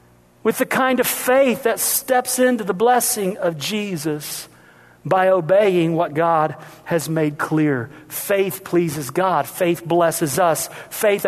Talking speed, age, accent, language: 140 wpm, 40-59, American, English